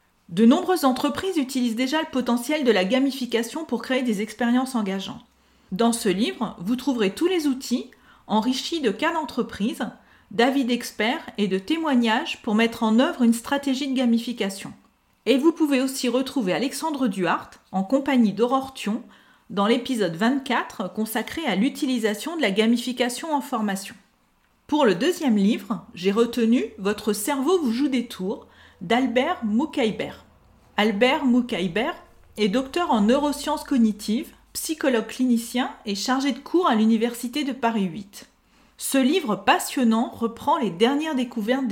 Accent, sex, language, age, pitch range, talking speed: French, female, French, 40-59, 220-270 Hz, 145 wpm